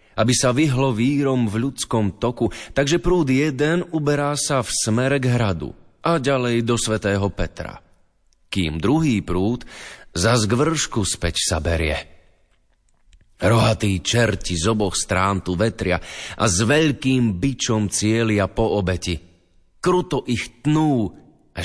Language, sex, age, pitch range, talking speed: Slovak, male, 30-49, 90-130 Hz, 130 wpm